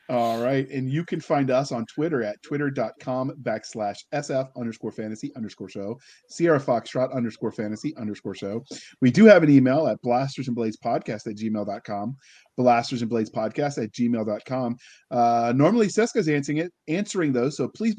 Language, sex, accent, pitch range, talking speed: English, male, American, 120-150 Hz, 165 wpm